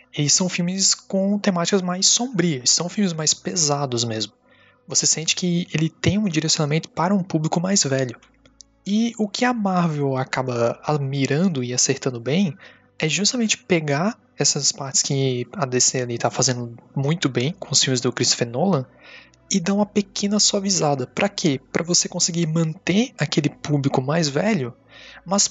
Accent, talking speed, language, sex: Brazilian, 160 wpm, Portuguese, male